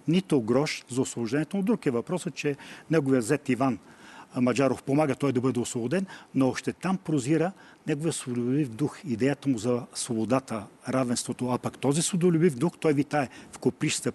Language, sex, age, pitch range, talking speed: Bulgarian, male, 40-59, 125-160 Hz, 165 wpm